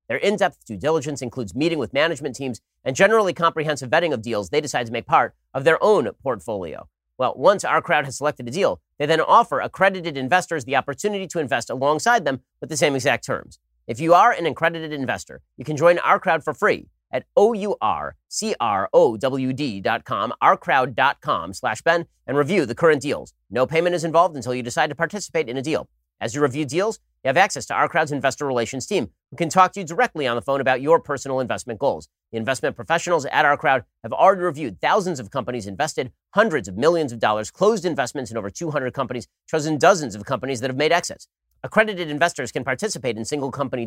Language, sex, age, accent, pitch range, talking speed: English, male, 30-49, American, 125-170 Hz, 200 wpm